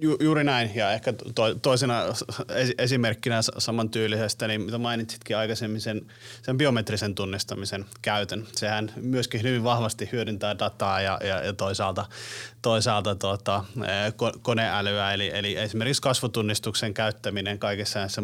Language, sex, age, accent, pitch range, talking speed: Finnish, male, 30-49, native, 105-120 Hz, 115 wpm